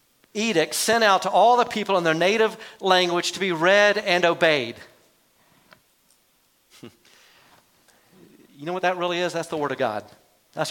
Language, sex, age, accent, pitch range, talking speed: English, male, 50-69, American, 145-195 Hz, 155 wpm